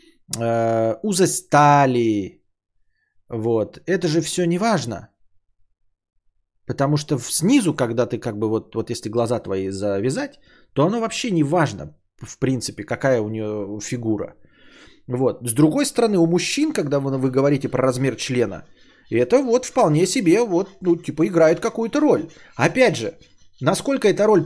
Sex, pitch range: male, 115-175 Hz